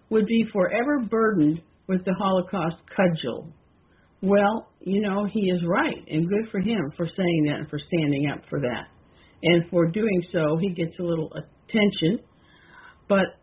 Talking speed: 165 wpm